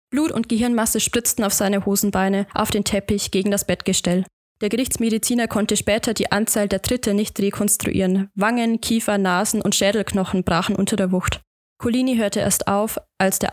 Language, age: German, 20-39